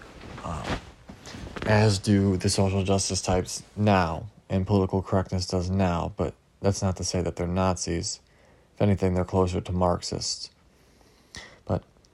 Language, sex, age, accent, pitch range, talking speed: English, male, 20-39, American, 90-100 Hz, 140 wpm